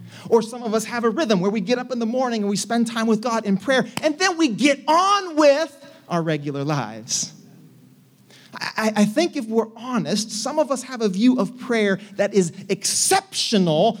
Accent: American